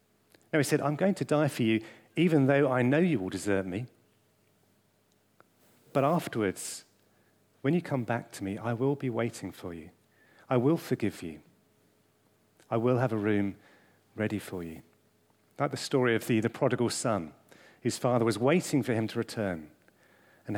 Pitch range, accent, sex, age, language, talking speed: 105-140 Hz, British, male, 40-59, English, 175 wpm